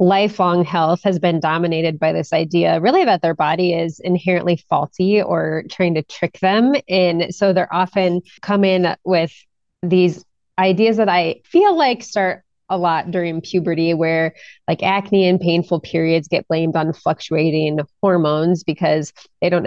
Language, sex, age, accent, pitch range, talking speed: English, female, 20-39, American, 160-185 Hz, 160 wpm